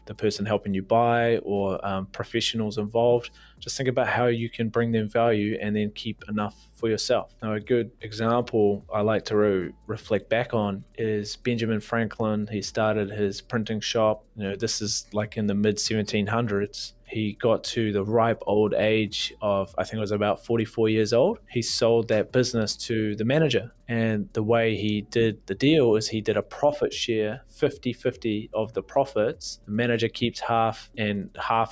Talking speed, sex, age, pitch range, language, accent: 185 wpm, male, 20-39, 105-115 Hz, English, Australian